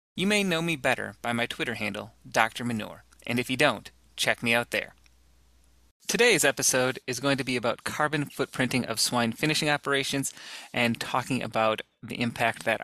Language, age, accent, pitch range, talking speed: English, 30-49, American, 115-140 Hz, 180 wpm